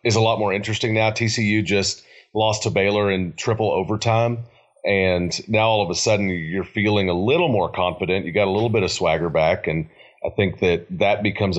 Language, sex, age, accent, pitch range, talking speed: English, male, 30-49, American, 90-105 Hz, 205 wpm